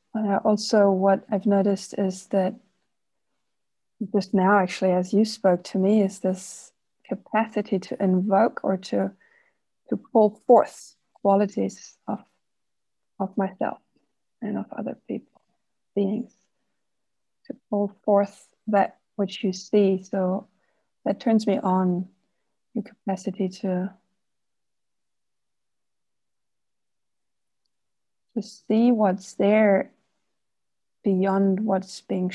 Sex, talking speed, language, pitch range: female, 105 wpm, English, 190-220 Hz